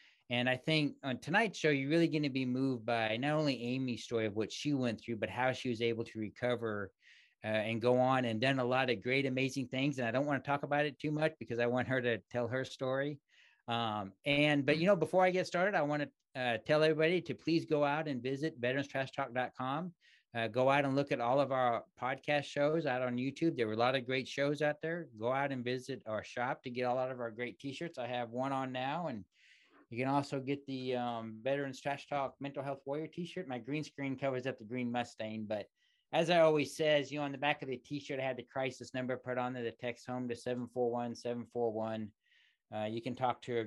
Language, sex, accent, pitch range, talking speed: English, male, American, 120-140 Hz, 245 wpm